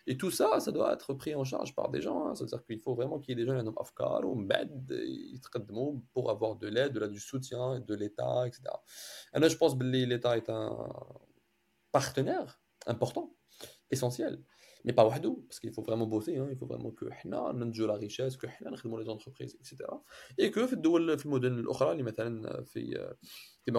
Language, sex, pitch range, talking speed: English, male, 110-140 Hz, 180 wpm